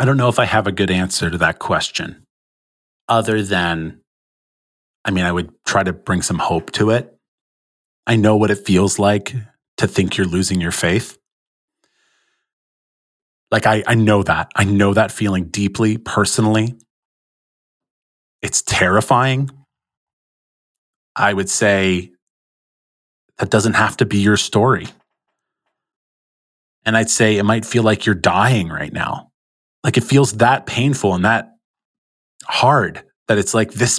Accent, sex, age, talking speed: American, male, 30-49, 145 wpm